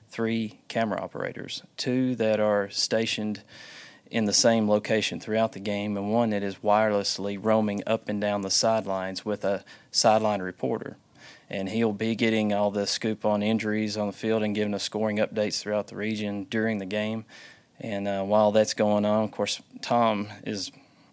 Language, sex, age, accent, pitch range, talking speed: English, male, 30-49, American, 100-110 Hz, 175 wpm